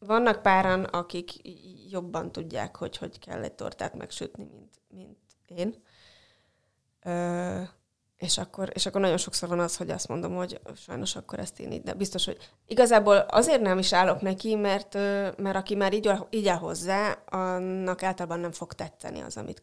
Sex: female